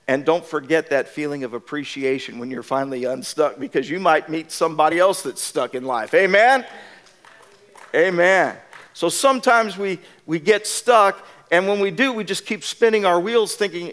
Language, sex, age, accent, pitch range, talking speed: English, male, 50-69, American, 140-190 Hz, 170 wpm